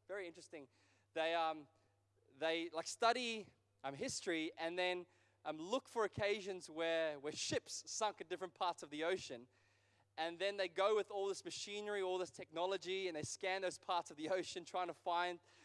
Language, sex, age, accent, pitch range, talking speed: English, male, 20-39, Australian, 150-195 Hz, 180 wpm